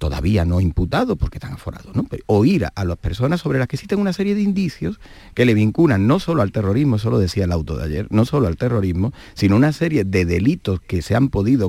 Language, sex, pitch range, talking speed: Spanish, male, 90-135 Hz, 250 wpm